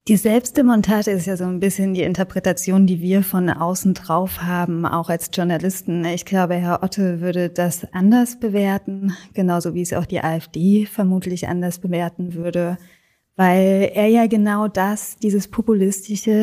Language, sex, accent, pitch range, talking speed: German, female, German, 180-200 Hz, 155 wpm